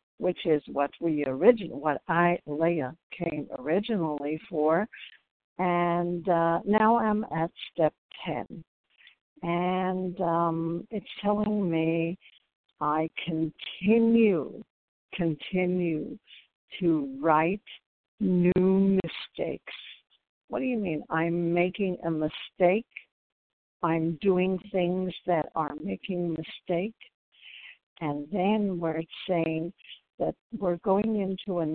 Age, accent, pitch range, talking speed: 60-79, American, 165-195 Hz, 100 wpm